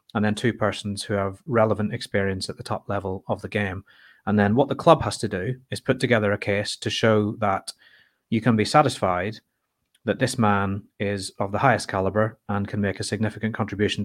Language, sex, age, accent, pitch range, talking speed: English, male, 30-49, British, 100-115 Hz, 210 wpm